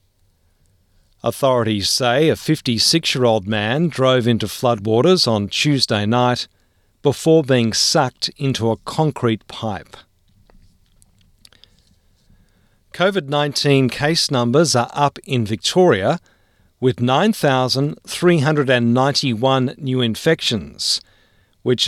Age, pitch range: 50-69, 100-145 Hz